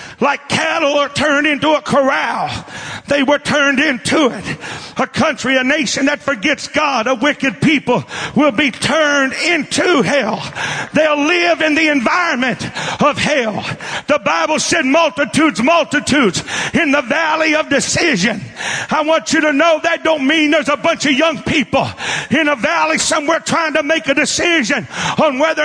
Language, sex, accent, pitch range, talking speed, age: English, male, American, 285-315 Hz, 160 wpm, 50-69